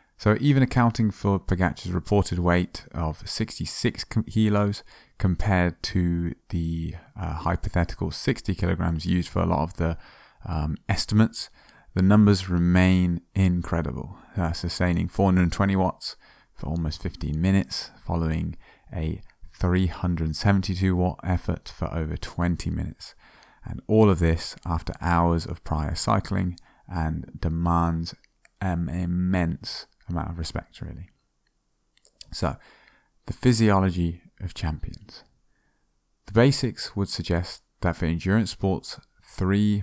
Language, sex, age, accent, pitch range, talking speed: English, male, 20-39, British, 80-100 Hz, 115 wpm